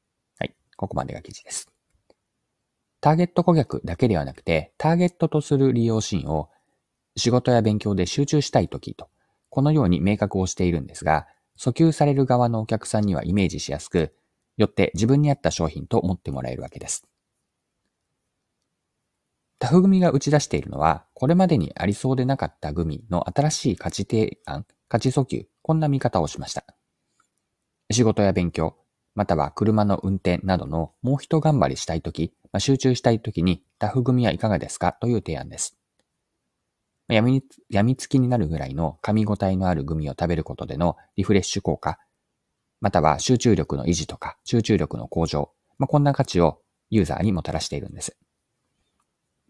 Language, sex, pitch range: Japanese, male, 85-130 Hz